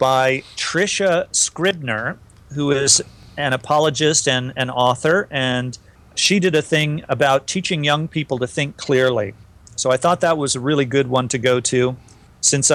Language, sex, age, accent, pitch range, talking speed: English, male, 40-59, American, 125-150 Hz, 165 wpm